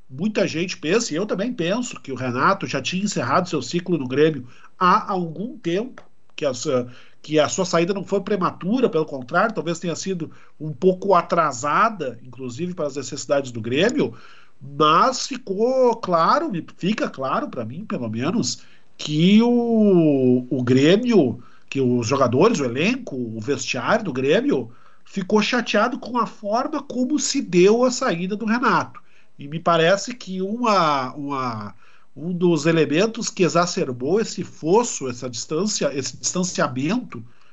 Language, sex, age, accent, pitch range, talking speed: Portuguese, male, 50-69, Brazilian, 140-205 Hz, 140 wpm